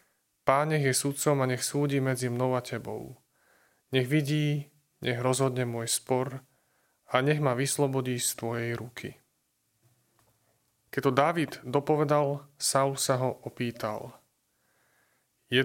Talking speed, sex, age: 125 wpm, male, 30-49